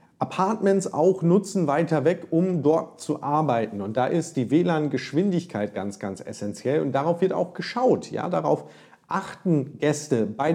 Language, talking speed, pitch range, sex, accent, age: German, 155 wpm, 140-185 Hz, male, German, 40-59